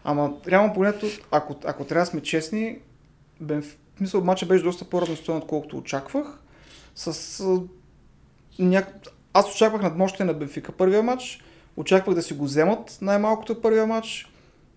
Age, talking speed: 30-49, 130 wpm